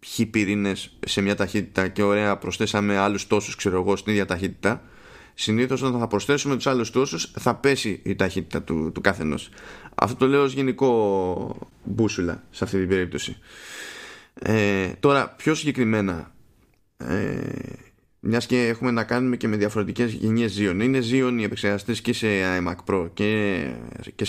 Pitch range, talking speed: 100-125 Hz, 155 wpm